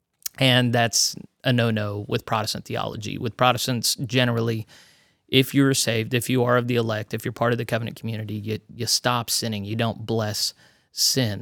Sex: male